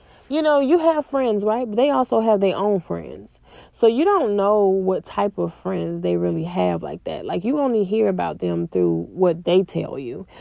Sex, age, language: female, 20-39, English